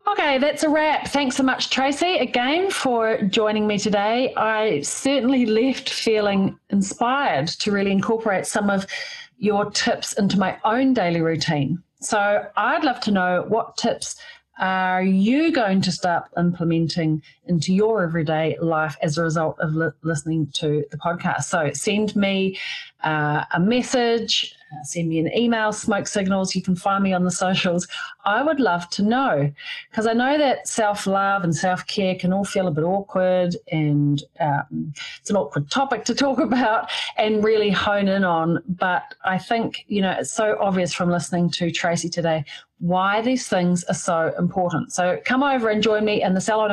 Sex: female